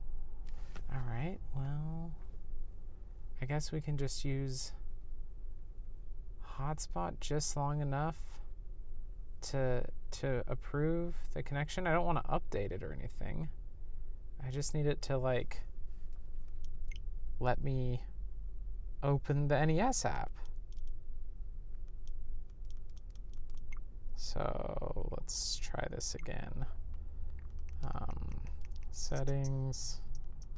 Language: English